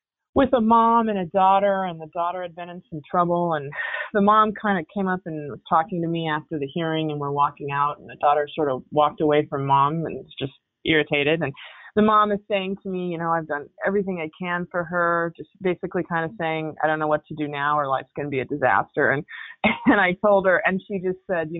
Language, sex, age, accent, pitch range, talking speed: English, female, 20-39, American, 150-185 Hz, 255 wpm